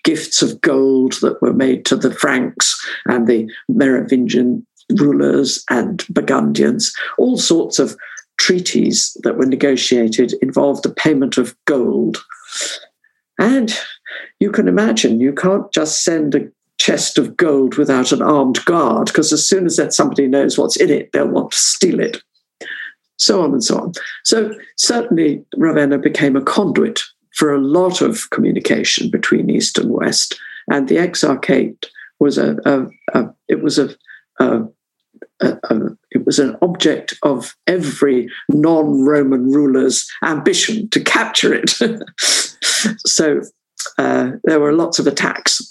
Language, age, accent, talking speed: English, 50-69, British, 145 wpm